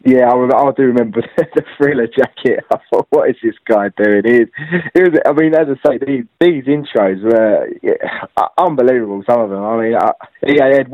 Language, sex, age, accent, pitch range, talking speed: English, male, 20-39, British, 115-160 Hz, 205 wpm